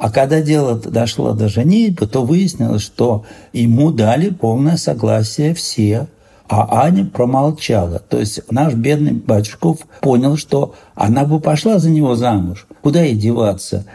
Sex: male